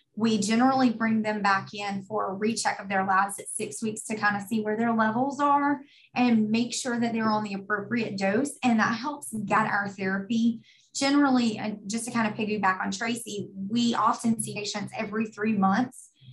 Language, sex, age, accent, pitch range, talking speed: English, female, 20-39, American, 200-240 Hz, 200 wpm